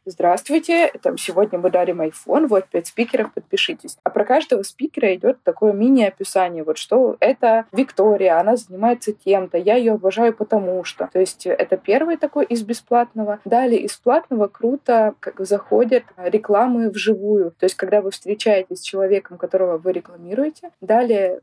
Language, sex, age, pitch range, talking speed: Russian, female, 20-39, 185-235 Hz, 155 wpm